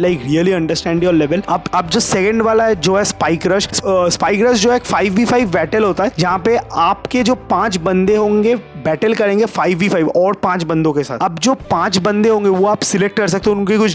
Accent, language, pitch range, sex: native, Hindi, 180-215 Hz, male